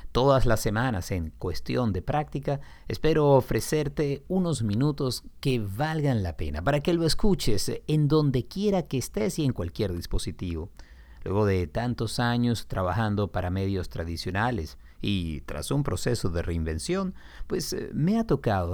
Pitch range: 90-135 Hz